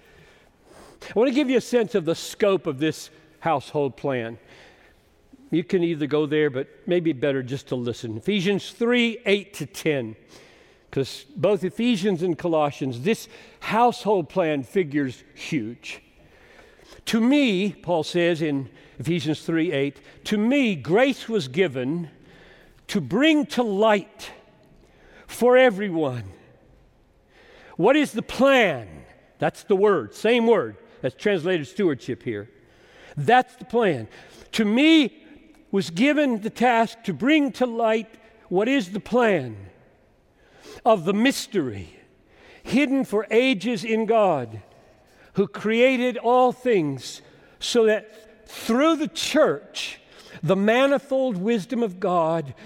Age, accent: 50-69, American